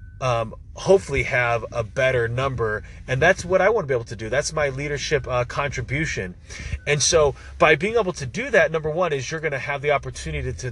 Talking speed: 220 wpm